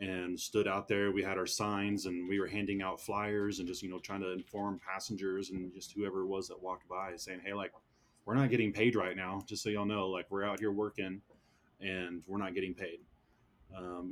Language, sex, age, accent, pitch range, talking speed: English, male, 20-39, American, 90-105 Hz, 230 wpm